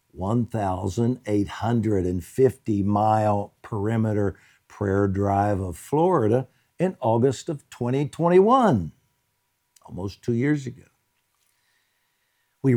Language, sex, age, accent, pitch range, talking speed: English, male, 60-79, American, 100-140 Hz, 70 wpm